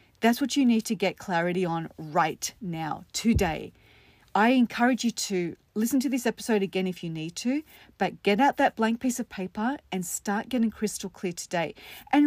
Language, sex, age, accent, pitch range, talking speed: English, female, 40-59, Australian, 200-270 Hz, 190 wpm